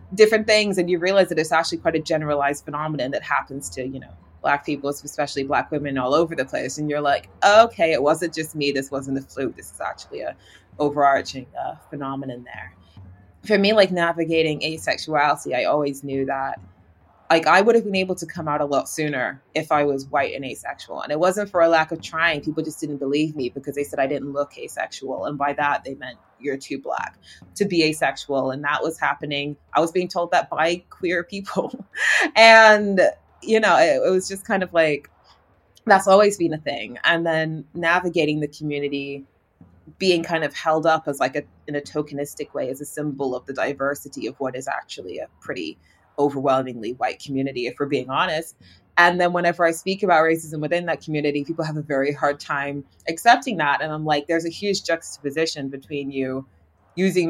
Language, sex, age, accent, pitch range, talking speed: French, female, 20-39, American, 140-170 Hz, 205 wpm